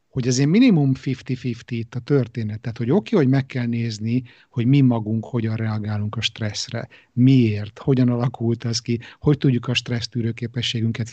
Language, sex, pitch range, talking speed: Hungarian, male, 115-135 Hz, 165 wpm